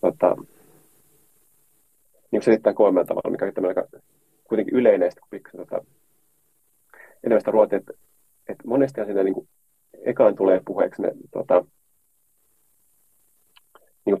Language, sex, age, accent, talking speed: Finnish, male, 30-49, native, 110 wpm